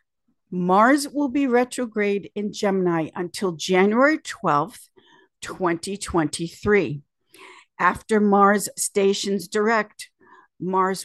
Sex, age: female, 50-69